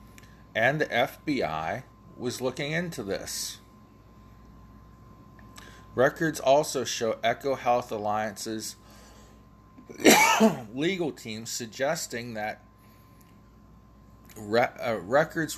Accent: American